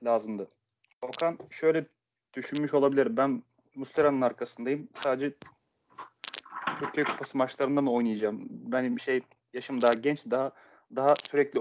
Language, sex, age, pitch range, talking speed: Turkish, male, 30-49, 125-140 Hz, 120 wpm